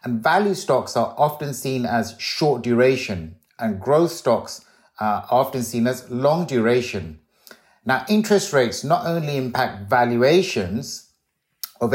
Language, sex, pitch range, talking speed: English, male, 110-135 Hz, 130 wpm